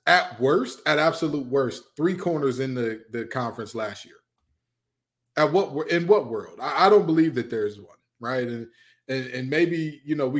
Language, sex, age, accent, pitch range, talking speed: English, male, 20-39, American, 140-210 Hz, 195 wpm